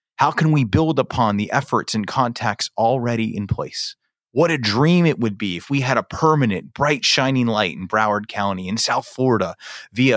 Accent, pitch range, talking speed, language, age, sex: American, 100-130 Hz, 195 wpm, English, 30-49, male